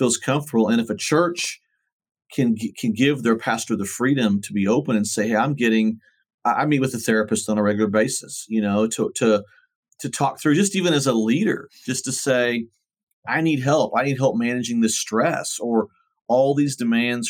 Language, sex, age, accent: English, male, 40-59, American